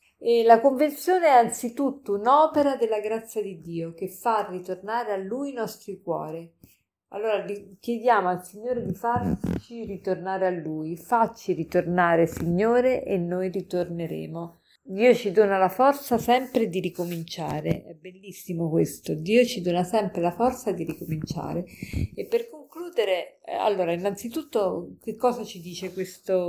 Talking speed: 135 wpm